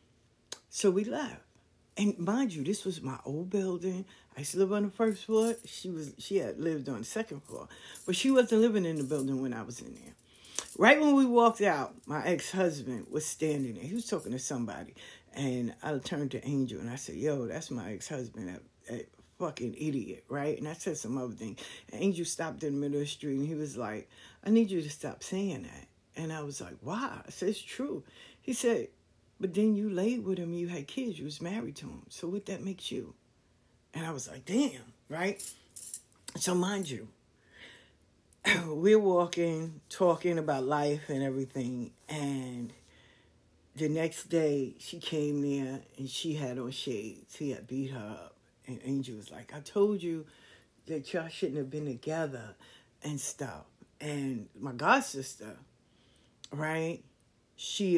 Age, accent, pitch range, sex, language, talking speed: 60-79, American, 130-185 Hz, female, English, 185 wpm